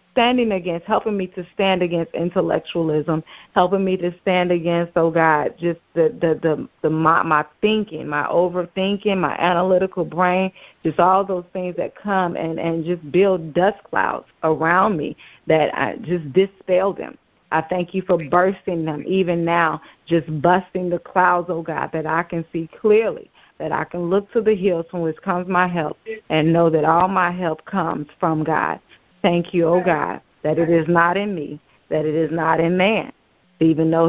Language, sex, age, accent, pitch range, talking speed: English, female, 30-49, American, 160-180 Hz, 185 wpm